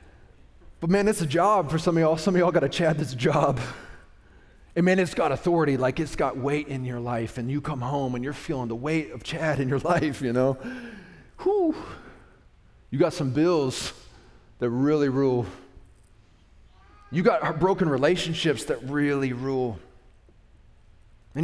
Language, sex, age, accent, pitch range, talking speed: English, male, 30-49, American, 105-155 Hz, 175 wpm